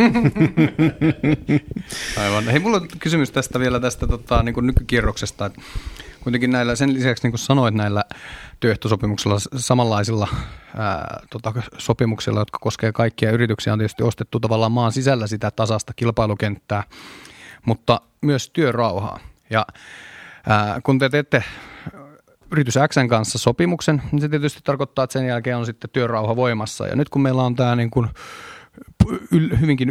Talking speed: 140 wpm